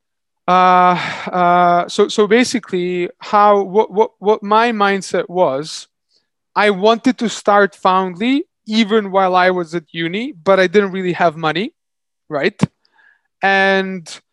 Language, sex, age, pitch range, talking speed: English, male, 20-39, 170-205 Hz, 130 wpm